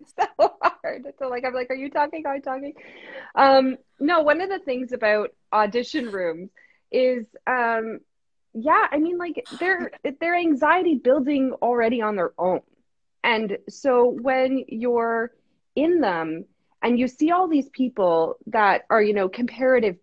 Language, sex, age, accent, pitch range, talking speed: English, female, 20-39, American, 200-275 Hz, 160 wpm